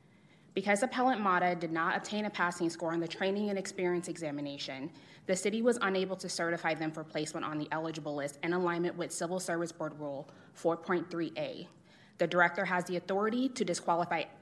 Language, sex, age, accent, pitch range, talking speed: English, female, 20-39, American, 165-190 Hz, 185 wpm